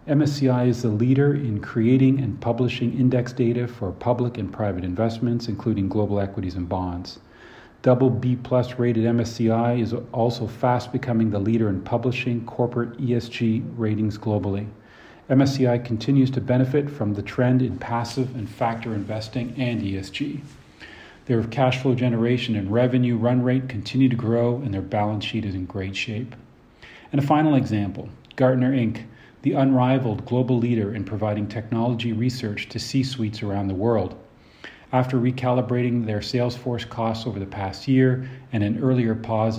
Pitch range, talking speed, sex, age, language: 105-125 Hz, 155 wpm, male, 40-59, English